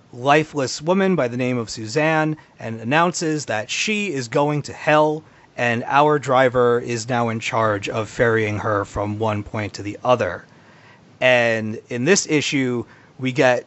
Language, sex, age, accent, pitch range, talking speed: English, male, 30-49, American, 115-150 Hz, 160 wpm